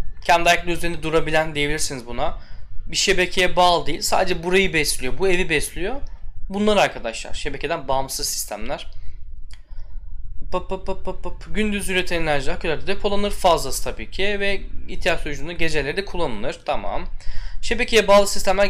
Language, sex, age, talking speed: Turkish, male, 10-29, 120 wpm